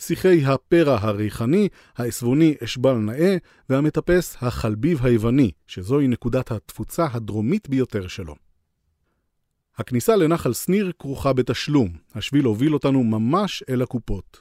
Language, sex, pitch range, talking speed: Hebrew, male, 115-155 Hz, 110 wpm